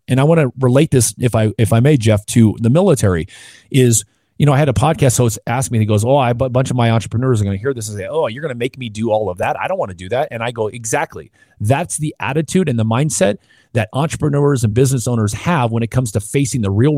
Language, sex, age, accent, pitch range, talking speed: English, male, 30-49, American, 110-140 Hz, 285 wpm